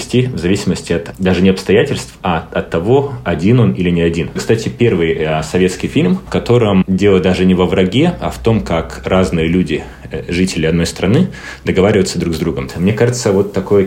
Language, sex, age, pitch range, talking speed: Russian, male, 20-39, 85-95 Hz, 180 wpm